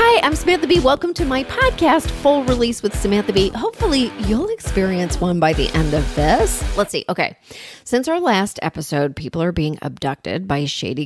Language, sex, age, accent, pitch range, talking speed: English, female, 30-49, American, 155-235 Hz, 190 wpm